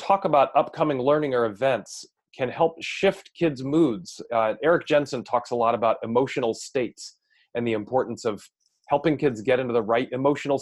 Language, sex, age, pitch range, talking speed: English, male, 30-49, 120-160 Hz, 175 wpm